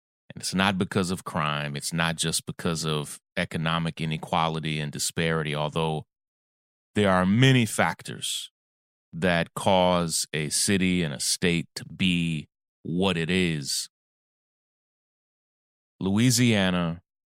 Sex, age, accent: male, 30-49, American